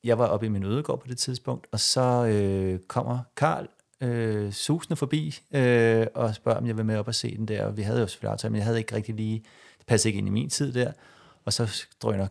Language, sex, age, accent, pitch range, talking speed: Danish, male, 30-49, native, 105-125 Hz, 250 wpm